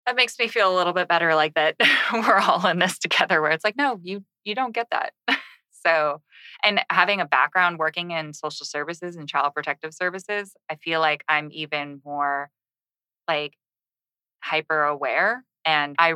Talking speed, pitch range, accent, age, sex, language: 180 wpm, 145-165 Hz, American, 20-39, female, English